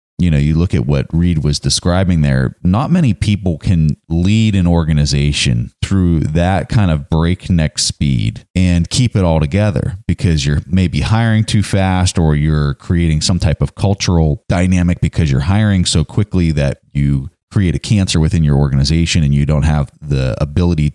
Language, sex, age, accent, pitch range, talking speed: English, male, 30-49, American, 80-105 Hz, 175 wpm